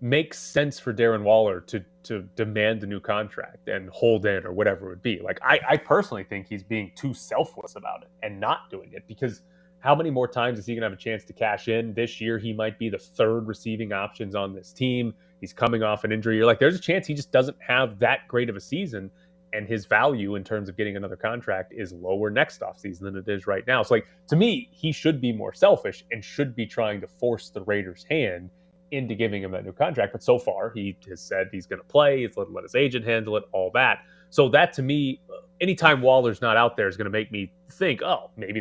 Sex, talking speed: male, 240 wpm